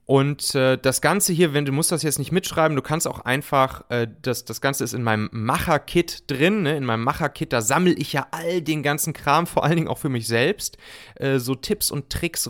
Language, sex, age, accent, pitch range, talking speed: German, male, 30-49, German, 110-155 Hz, 245 wpm